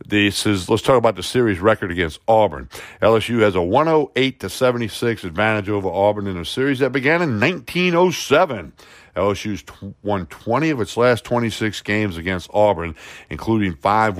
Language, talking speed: English, 155 wpm